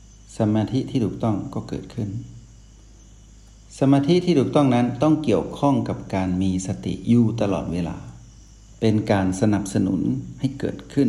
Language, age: Thai, 60-79